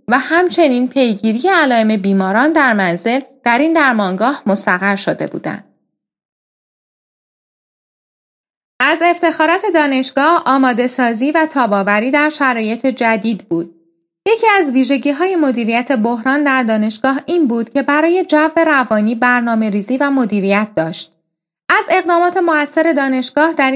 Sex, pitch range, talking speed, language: female, 225-300 Hz, 120 wpm, Persian